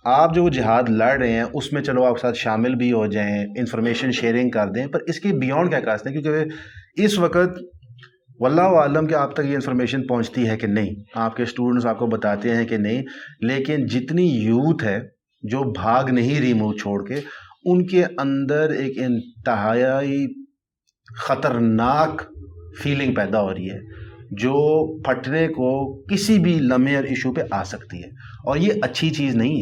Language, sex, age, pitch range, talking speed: Urdu, male, 30-49, 115-155 Hz, 185 wpm